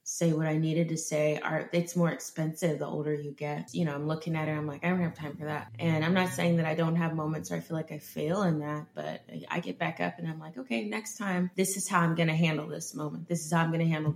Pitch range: 160-180 Hz